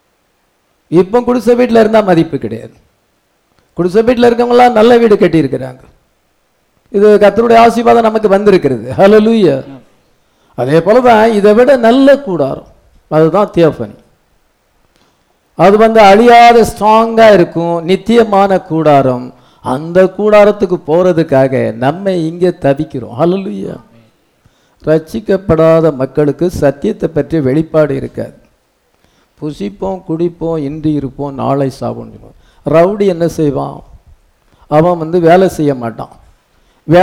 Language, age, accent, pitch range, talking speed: English, 50-69, Indian, 150-205 Hz, 60 wpm